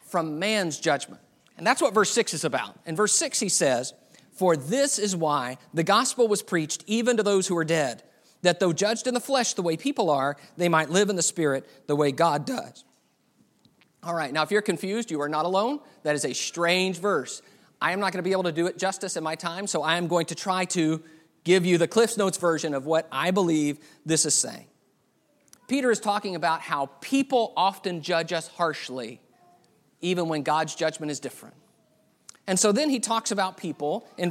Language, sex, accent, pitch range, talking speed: English, male, American, 160-210 Hz, 210 wpm